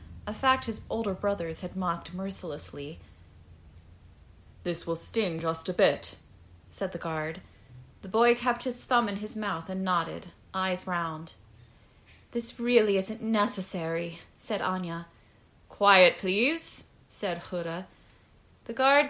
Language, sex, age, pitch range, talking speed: English, female, 30-49, 170-240 Hz, 130 wpm